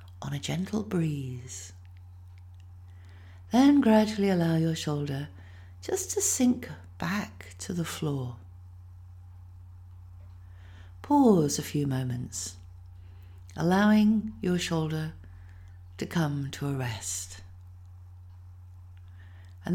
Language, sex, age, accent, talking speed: English, female, 60-79, British, 90 wpm